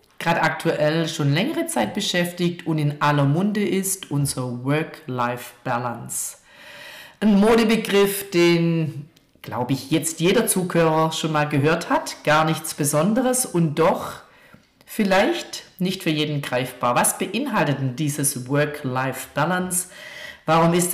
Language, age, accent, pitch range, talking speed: German, 50-69, German, 145-195 Hz, 120 wpm